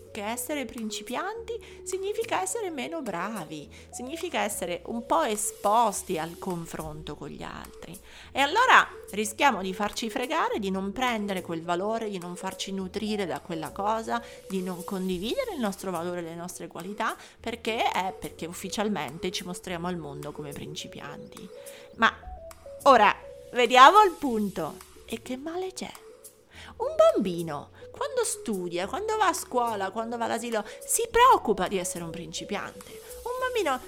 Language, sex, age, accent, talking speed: Italian, female, 30-49, native, 145 wpm